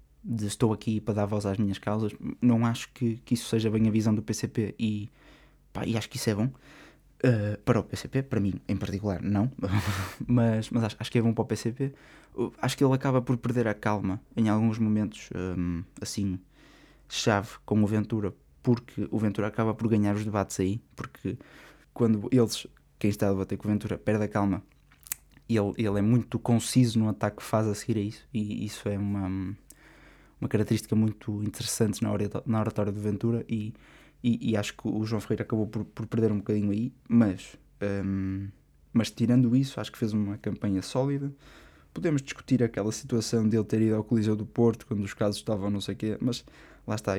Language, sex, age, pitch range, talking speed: Portuguese, male, 20-39, 105-115 Hz, 195 wpm